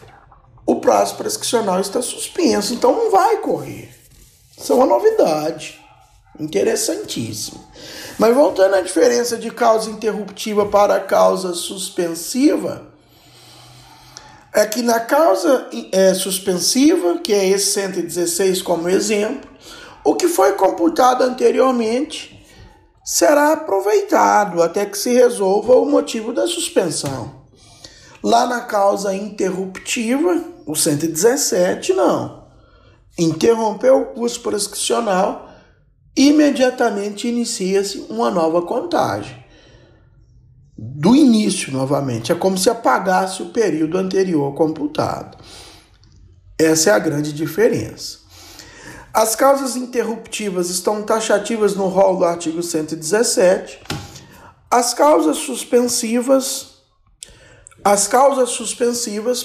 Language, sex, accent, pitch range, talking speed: Portuguese, male, Brazilian, 180-250 Hz, 100 wpm